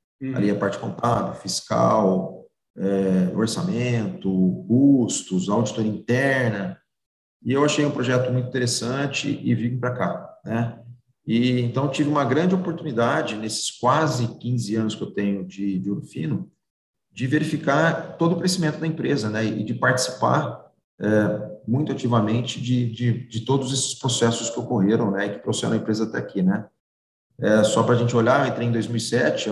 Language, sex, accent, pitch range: Portuguese, male, Brazilian, 105-135 Hz